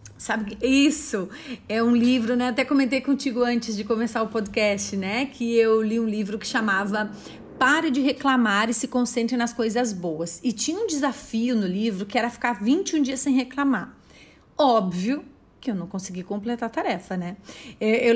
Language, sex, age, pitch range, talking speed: Vietnamese, female, 30-49, 210-260 Hz, 180 wpm